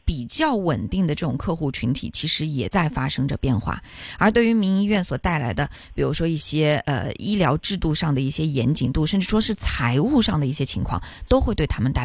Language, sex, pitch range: Chinese, female, 145-195 Hz